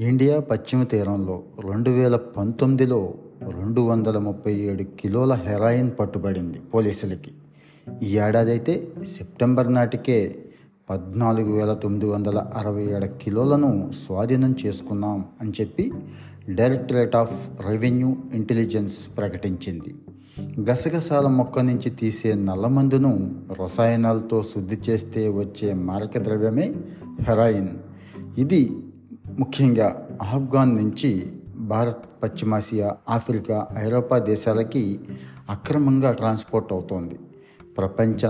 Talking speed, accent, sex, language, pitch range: 80 wpm, native, male, Telugu, 100-125 Hz